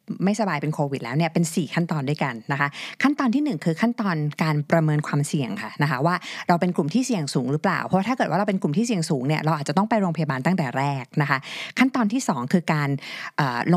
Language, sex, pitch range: Thai, female, 140-190 Hz